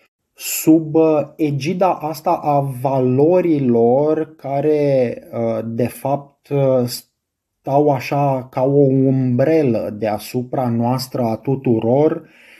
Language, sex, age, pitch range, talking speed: Romanian, male, 20-39, 120-140 Hz, 80 wpm